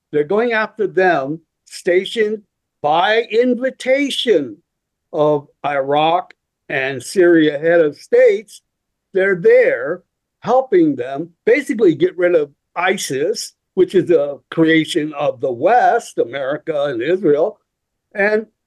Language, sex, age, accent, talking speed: English, male, 60-79, American, 110 wpm